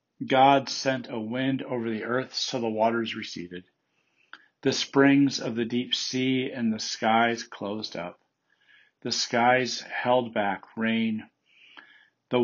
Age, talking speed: 50-69, 135 wpm